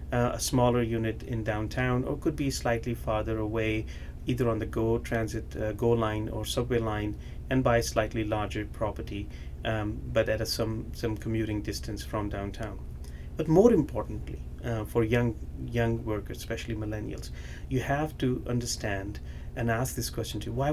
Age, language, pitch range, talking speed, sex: 30-49, English, 105-125 Hz, 175 wpm, male